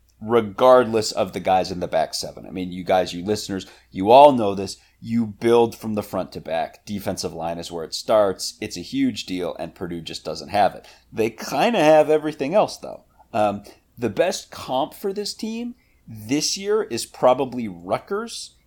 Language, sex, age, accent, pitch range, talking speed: English, male, 30-49, American, 100-145 Hz, 195 wpm